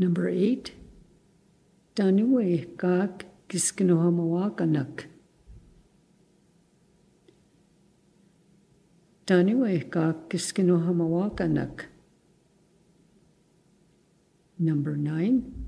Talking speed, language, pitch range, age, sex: 45 wpm, English, 160-185 Hz, 60-79, female